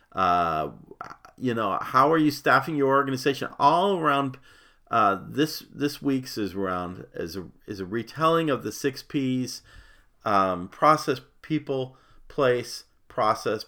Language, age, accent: English, 50-69, American